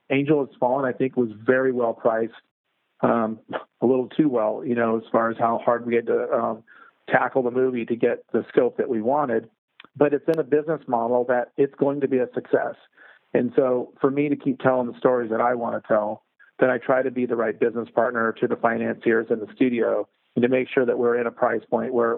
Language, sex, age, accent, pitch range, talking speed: English, male, 40-59, American, 115-140 Hz, 240 wpm